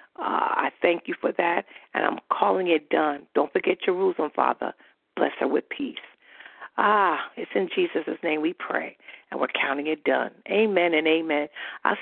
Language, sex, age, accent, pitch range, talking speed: English, female, 50-69, American, 180-265 Hz, 175 wpm